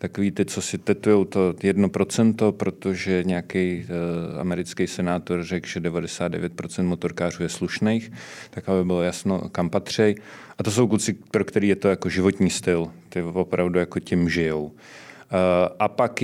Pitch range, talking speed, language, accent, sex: 90-110 Hz, 150 wpm, Czech, native, male